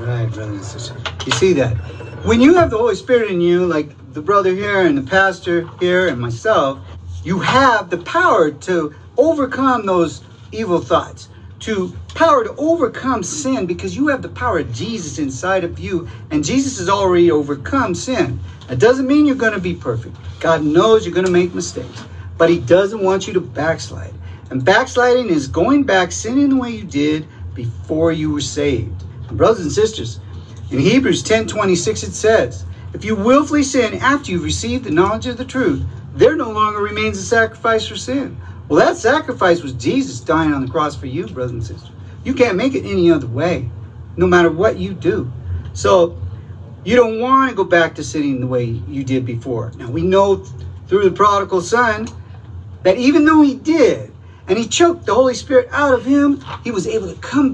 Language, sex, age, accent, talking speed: English, male, 50-69, American, 190 wpm